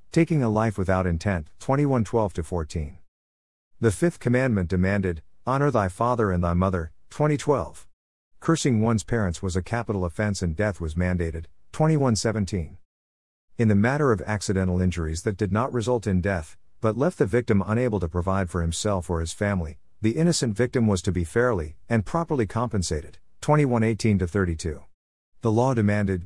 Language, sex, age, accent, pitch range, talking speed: English, male, 50-69, American, 90-120 Hz, 155 wpm